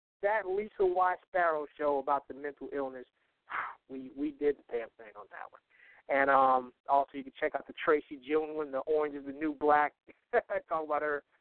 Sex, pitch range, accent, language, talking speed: male, 140-190 Hz, American, English, 195 wpm